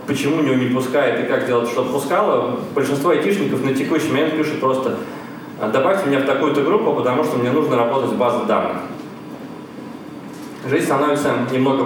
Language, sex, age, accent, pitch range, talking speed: Russian, male, 20-39, native, 130-150 Hz, 160 wpm